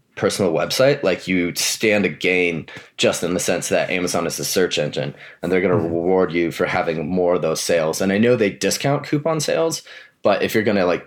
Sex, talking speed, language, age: male, 230 wpm, English, 20-39